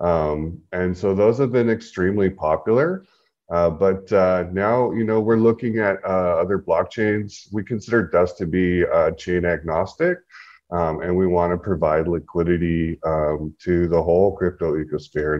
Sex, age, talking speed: male, 30-49, 160 wpm